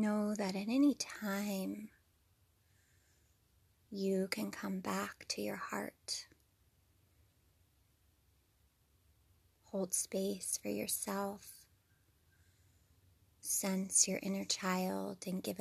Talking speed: 85 wpm